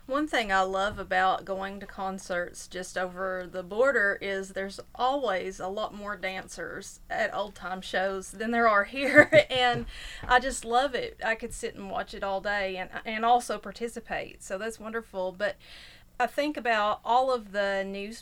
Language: English